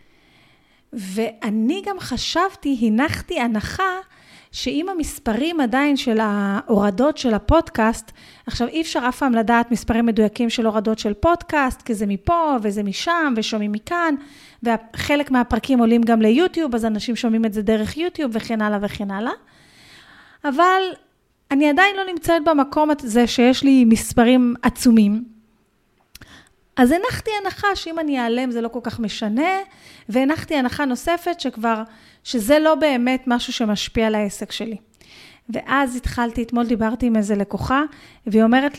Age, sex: 30-49, female